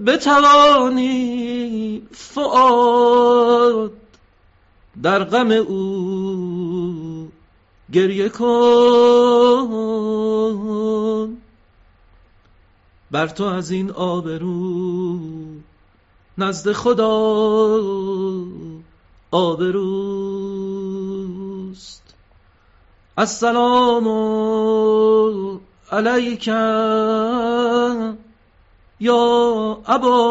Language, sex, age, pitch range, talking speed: Persian, male, 50-69, 175-220 Hz, 40 wpm